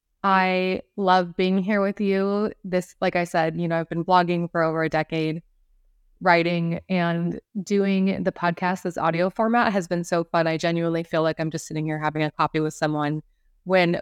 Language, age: English, 20-39